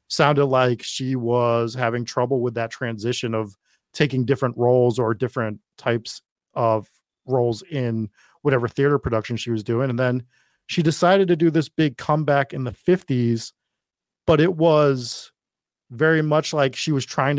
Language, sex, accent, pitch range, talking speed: English, male, American, 115-145 Hz, 160 wpm